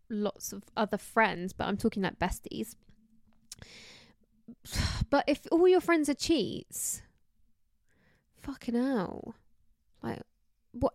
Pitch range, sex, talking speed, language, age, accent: 200-265 Hz, female, 110 wpm, English, 10-29, British